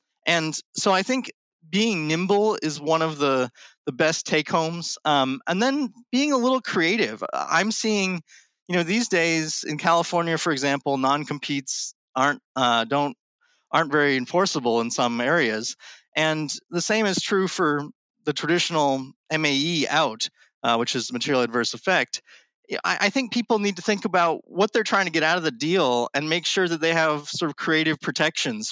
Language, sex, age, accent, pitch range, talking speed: English, male, 30-49, American, 130-180 Hz, 175 wpm